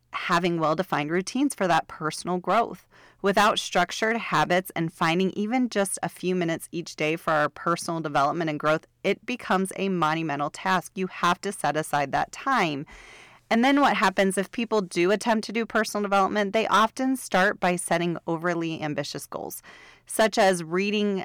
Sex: female